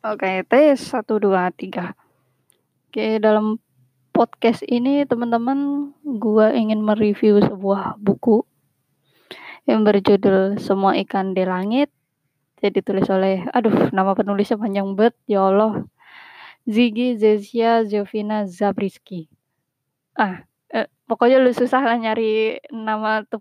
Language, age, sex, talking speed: Indonesian, 20-39, female, 120 wpm